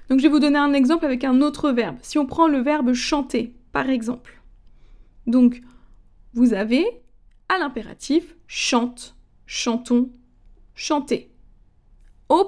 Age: 20-39